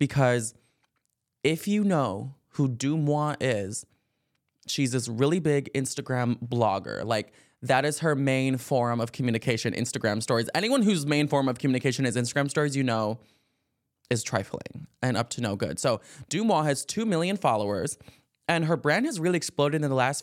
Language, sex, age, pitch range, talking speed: English, male, 20-39, 120-150 Hz, 165 wpm